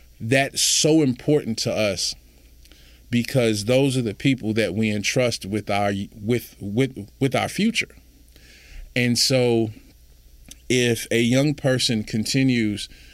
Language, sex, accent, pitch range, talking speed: English, male, American, 95-125 Hz, 125 wpm